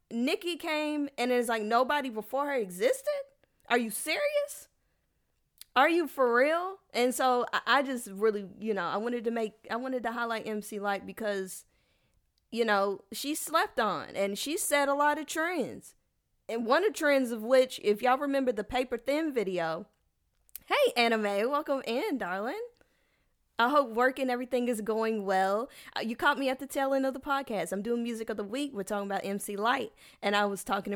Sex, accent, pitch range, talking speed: female, American, 205-280 Hz, 190 wpm